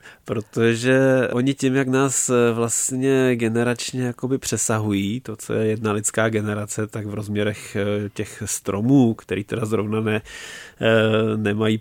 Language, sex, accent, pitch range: Czech, male, native, 110-115 Hz